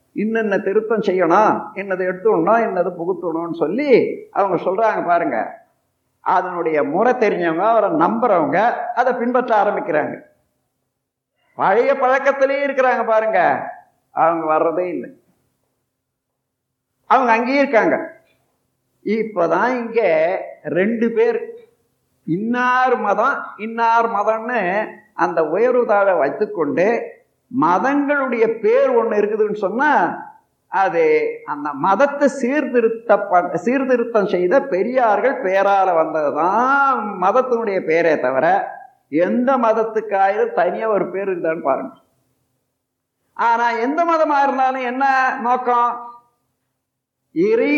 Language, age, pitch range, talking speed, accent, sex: Tamil, 50-69, 205-275 Hz, 90 wpm, native, male